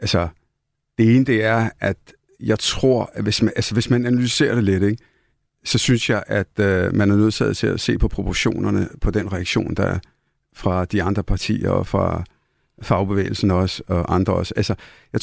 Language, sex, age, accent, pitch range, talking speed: Danish, male, 50-69, native, 105-125 Hz, 195 wpm